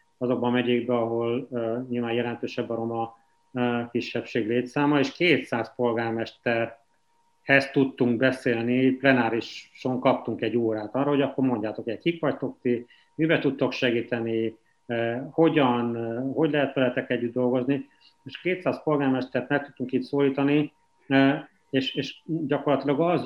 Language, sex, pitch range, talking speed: Hungarian, male, 120-140 Hz, 135 wpm